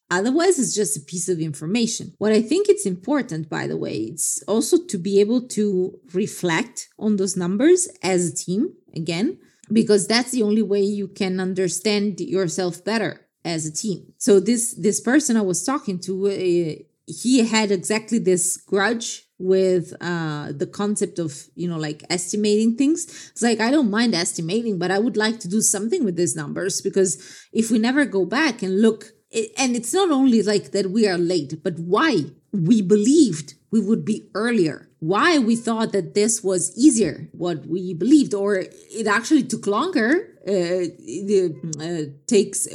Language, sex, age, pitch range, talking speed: English, female, 30-49, 185-230 Hz, 180 wpm